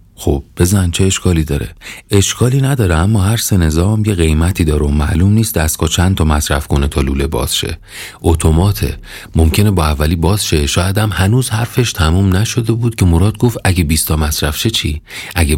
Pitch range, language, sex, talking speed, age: 80-100 Hz, Persian, male, 190 wpm, 40-59